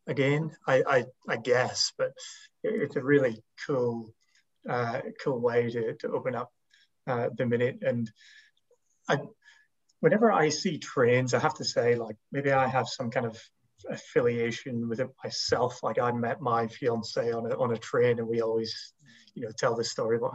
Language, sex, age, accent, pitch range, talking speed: English, male, 30-49, British, 115-135 Hz, 180 wpm